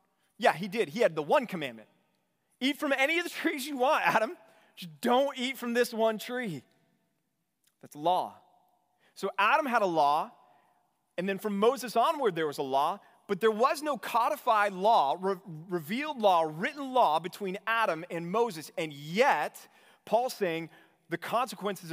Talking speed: 165 wpm